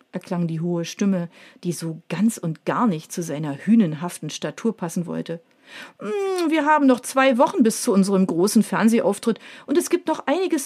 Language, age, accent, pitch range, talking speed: German, 40-59, German, 180-250 Hz, 175 wpm